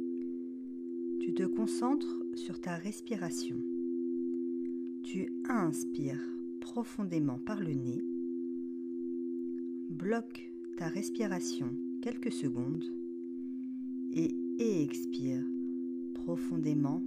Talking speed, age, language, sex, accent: 65 wpm, 50-69, French, female, French